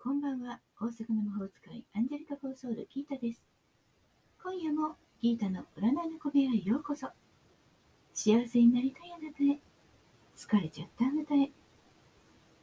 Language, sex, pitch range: Japanese, female, 220-300 Hz